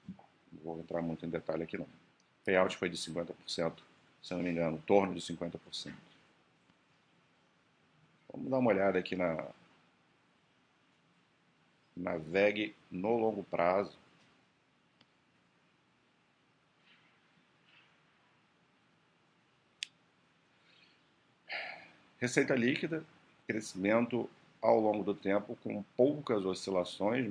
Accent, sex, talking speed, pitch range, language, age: Brazilian, male, 90 wpm, 85-100 Hz, Portuguese, 50-69